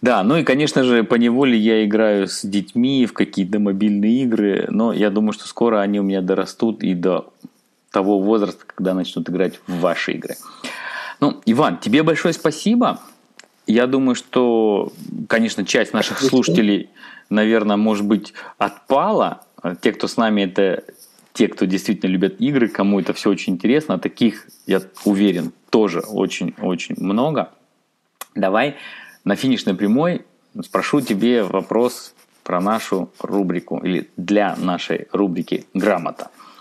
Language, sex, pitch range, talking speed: Russian, male, 100-125 Hz, 140 wpm